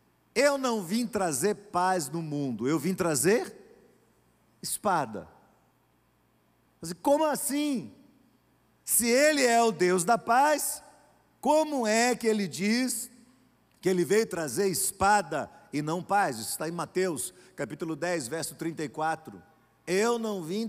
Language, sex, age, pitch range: Portuguese, male, 50-69, 175-230 Hz